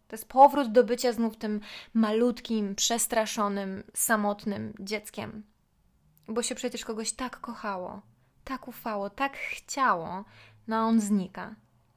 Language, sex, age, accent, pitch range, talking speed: Polish, female, 20-39, native, 200-245 Hz, 125 wpm